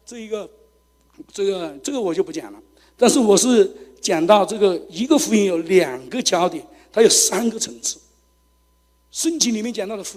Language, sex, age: Chinese, male, 60-79